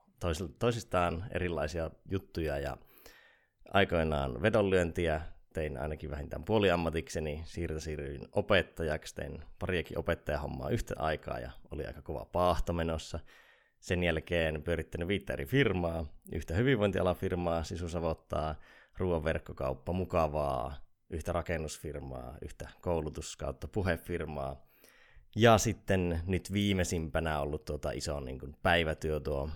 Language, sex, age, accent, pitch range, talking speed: Finnish, male, 20-39, native, 75-90 Hz, 105 wpm